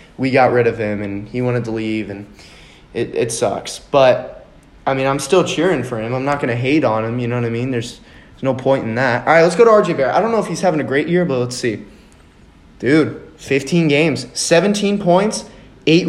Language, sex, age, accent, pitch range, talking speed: English, male, 20-39, American, 125-170 Hz, 240 wpm